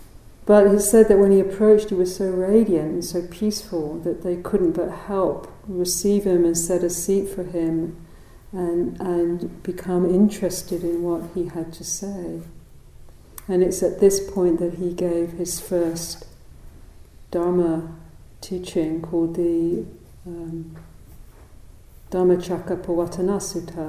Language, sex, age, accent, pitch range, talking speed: English, female, 50-69, British, 120-180 Hz, 135 wpm